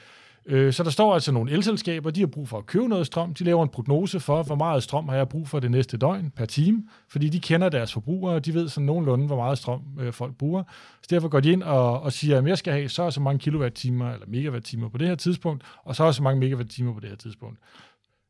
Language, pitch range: Danish, 130-170 Hz